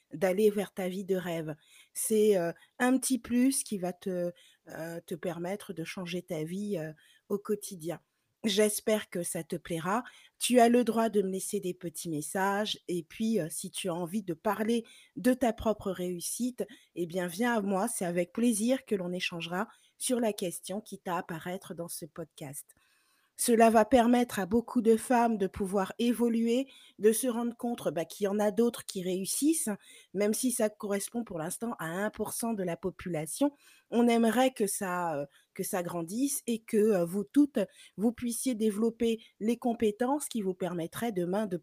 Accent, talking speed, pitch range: French, 180 wpm, 180-235 Hz